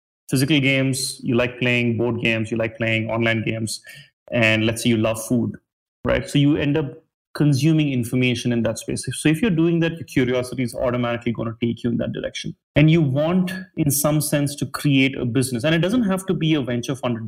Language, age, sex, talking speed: English, 30-49, male, 215 wpm